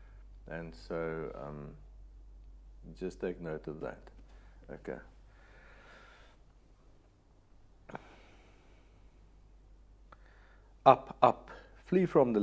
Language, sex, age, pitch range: English, male, 50-69, 90-115 Hz